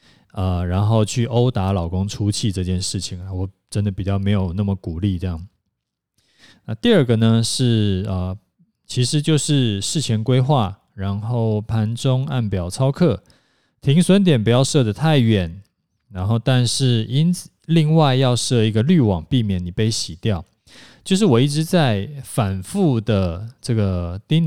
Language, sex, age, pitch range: Chinese, male, 20-39, 100-130 Hz